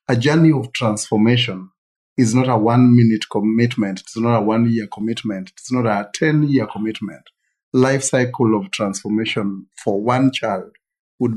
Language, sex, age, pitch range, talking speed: English, male, 50-69, 110-135 Hz, 145 wpm